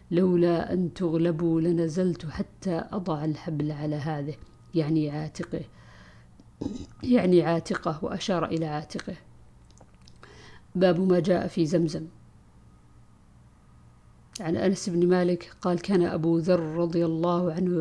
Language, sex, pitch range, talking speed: Arabic, female, 160-185 Hz, 115 wpm